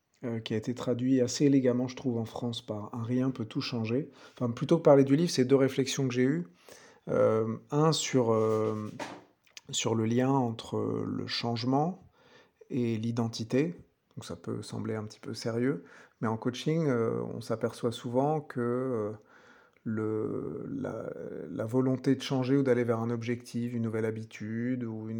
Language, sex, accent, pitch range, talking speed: French, male, French, 110-130 Hz, 175 wpm